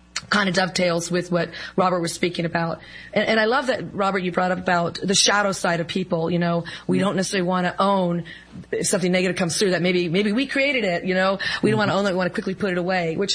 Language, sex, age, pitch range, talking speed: English, female, 40-59, 180-215 Hz, 265 wpm